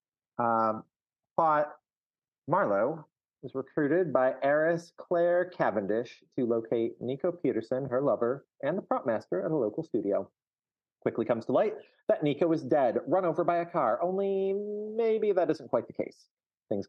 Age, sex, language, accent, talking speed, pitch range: 30-49, male, English, American, 155 wpm, 130-185 Hz